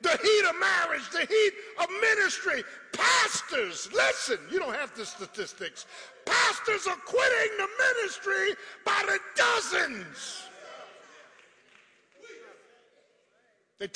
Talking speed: 105 wpm